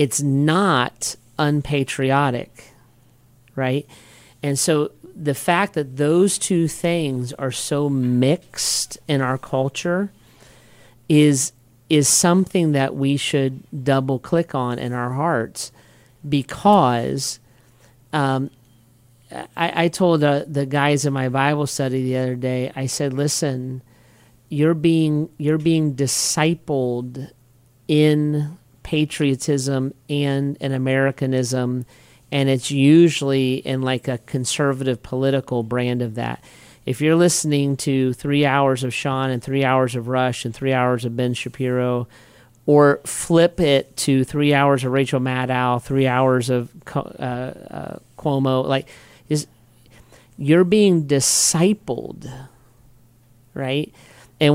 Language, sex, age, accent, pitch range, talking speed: English, male, 40-59, American, 125-150 Hz, 120 wpm